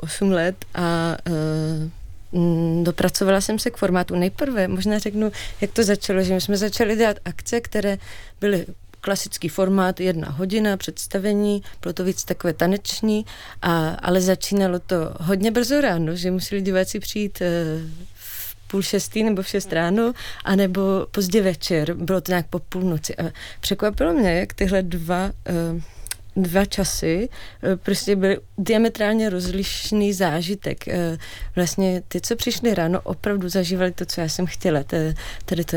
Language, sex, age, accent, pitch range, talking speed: Czech, female, 20-39, native, 165-195 Hz, 145 wpm